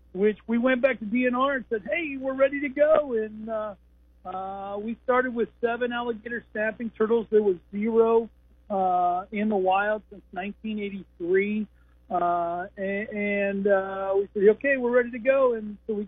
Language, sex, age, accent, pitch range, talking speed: English, male, 50-69, American, 195-235 Hz, 170 wpm